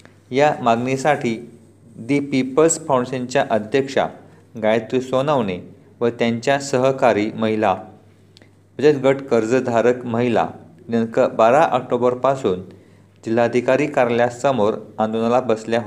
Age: 40-59